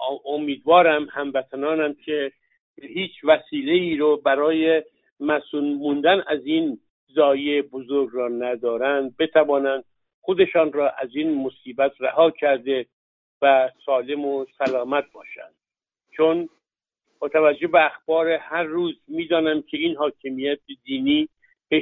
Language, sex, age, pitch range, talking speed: Persian, male, 60-79, 135-170 Hz, 115 wpm